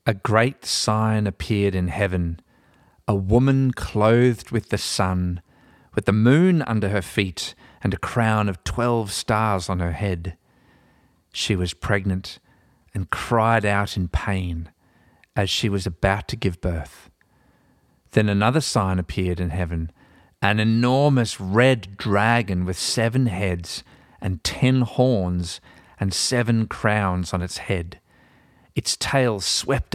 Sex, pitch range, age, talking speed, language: male, 90-115 Hz, 40-59, 135 wpm, English